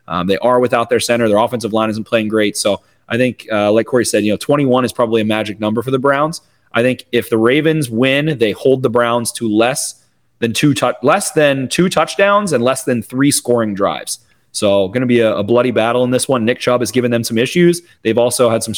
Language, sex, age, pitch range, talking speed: English, male, 30-49, 110-130 Hz, 245 wpm